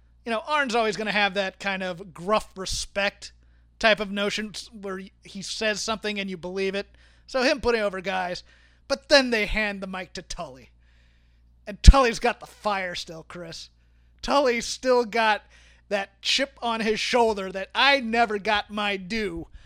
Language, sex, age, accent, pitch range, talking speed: English, male, 30-49, American, 190-225 Hz, 175 wpm